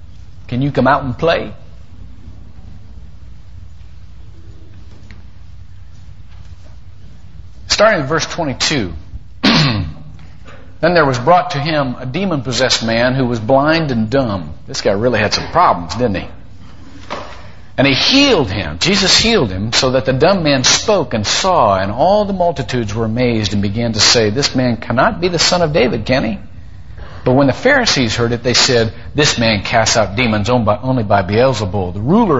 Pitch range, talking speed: 95-140 Hz, 160 wpm